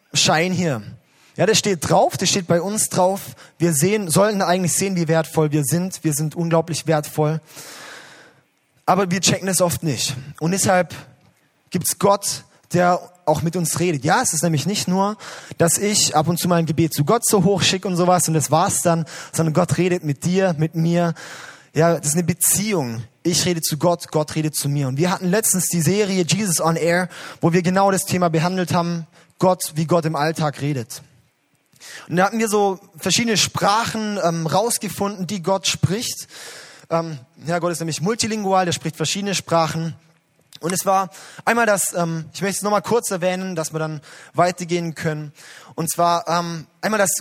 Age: 20-39